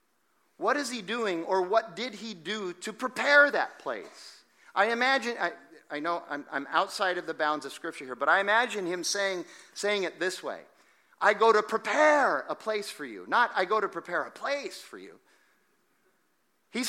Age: 40-59